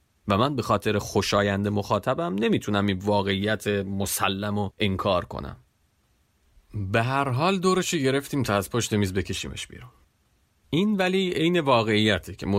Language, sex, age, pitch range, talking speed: Persian, male, 40-59, 95-130 Hz, 140 wpm